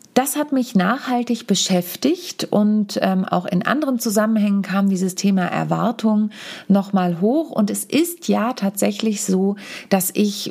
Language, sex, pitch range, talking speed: German, female, 185-225 Hz, 145 wpm